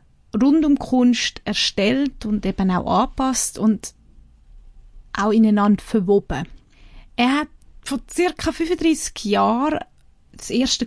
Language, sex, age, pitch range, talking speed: German, female, 30-49, 195-245 Hz, 110 wpm